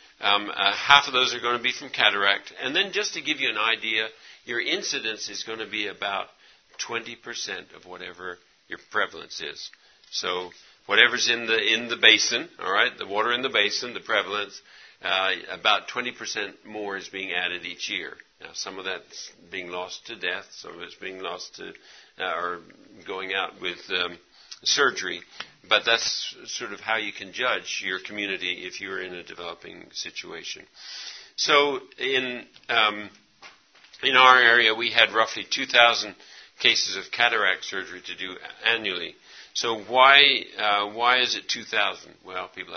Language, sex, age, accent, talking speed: English, male, 50-69, American, 170 wpm